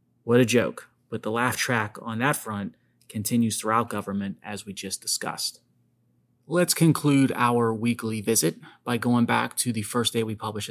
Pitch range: 110-125 Hz